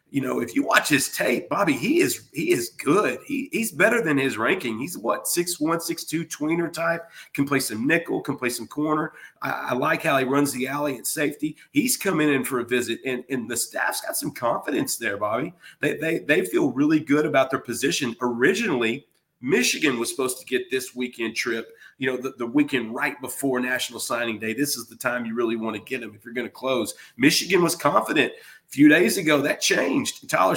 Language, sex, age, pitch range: English, male, 40-59, 130-155 Hz